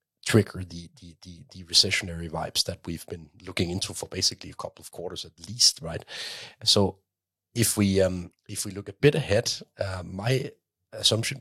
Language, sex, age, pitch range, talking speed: English, male, 30-49, 90-105 Hz, 180 wpm